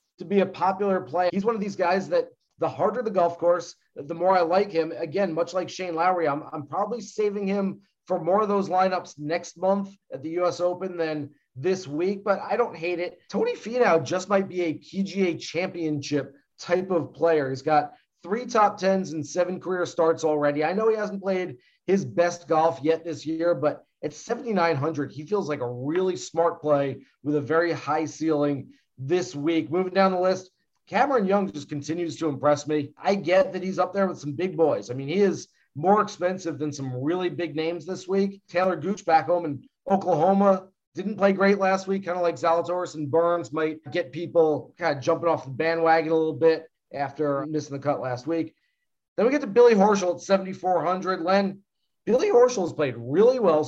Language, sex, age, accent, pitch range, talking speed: English, male, 30-49, American, 155-195 Hz, 205 wpm